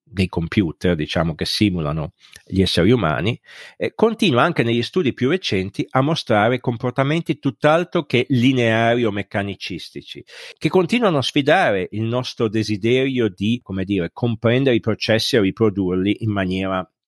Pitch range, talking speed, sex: 95-120 Hz, 140 wpm, male